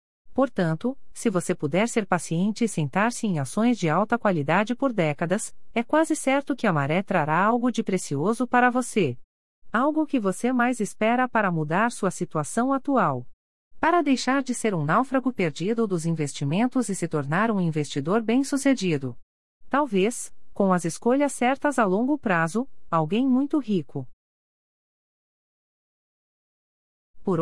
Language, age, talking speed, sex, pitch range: Portuguese, 40-59, 140 wpm, female, 165-245 Hz